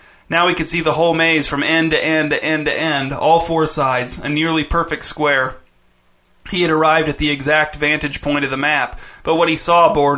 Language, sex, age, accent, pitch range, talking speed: English, male, 30-49, American, 145-160 Hz, 225 wpm